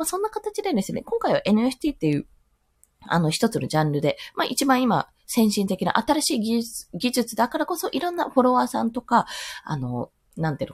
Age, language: 20-39, Japanese